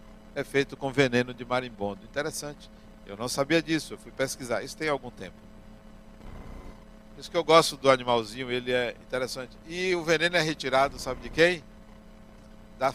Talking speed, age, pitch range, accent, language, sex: 170 wpm, 60-79, 110-145 Hz, Brazilian, Portuguese, male